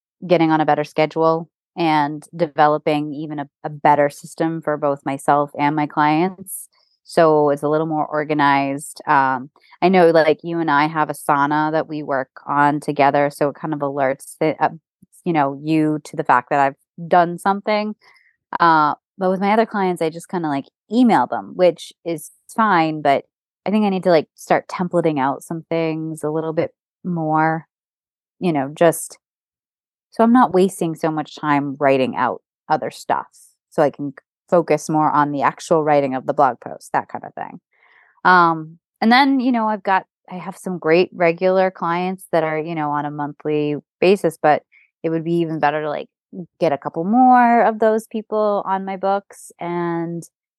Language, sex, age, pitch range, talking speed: English, female, 20-39, 150-175 Hz, 185 wpm